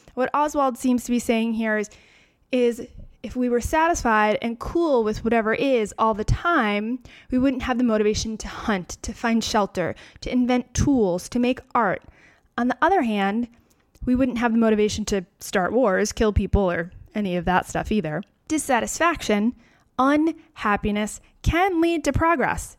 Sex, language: female, English